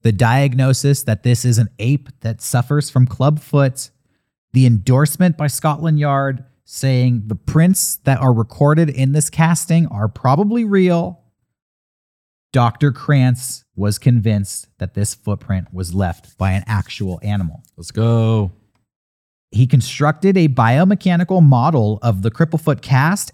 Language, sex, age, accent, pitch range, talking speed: English, male, 40-59, American, 110-160 Hz, 135 wpm